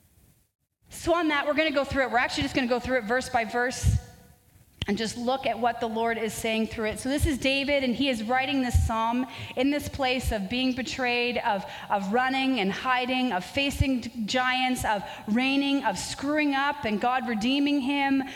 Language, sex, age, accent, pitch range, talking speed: English, female, 30-49, American, 225-275 Hz, 205 wpm